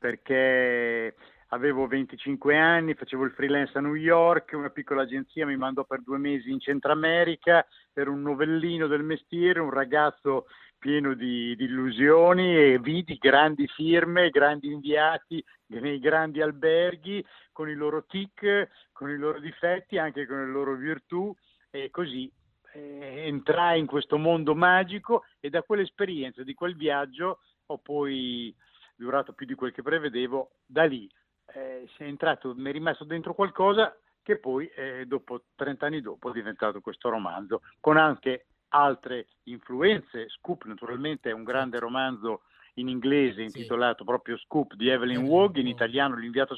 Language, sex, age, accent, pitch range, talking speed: Italian, male, 50-69, native, 130-160 Hz, 155 wpm